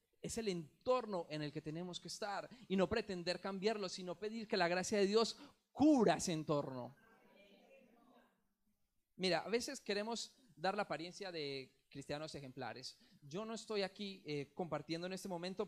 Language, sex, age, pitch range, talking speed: English, male, 30-49, 155-210 Hz, 160 wpm